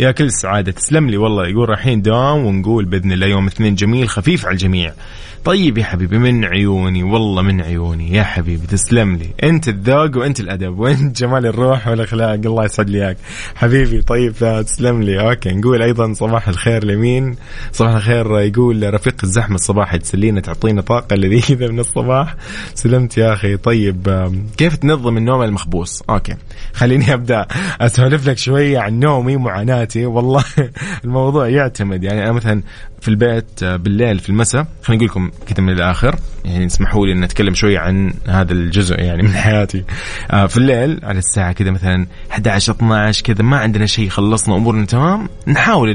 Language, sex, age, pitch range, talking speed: Arabic, male, 20-39, 95-120 Hz, 165 wpm